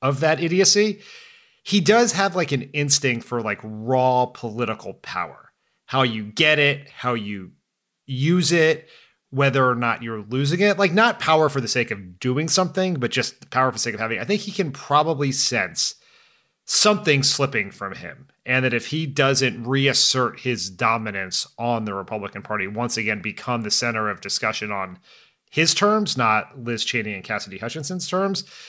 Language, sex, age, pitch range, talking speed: English, male, 30-49, 110-150 Hz, 180 wpm